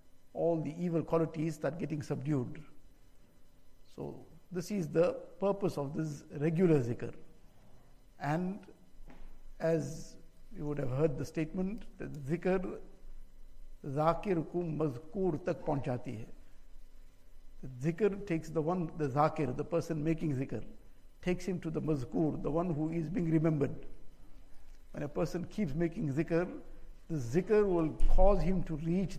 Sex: male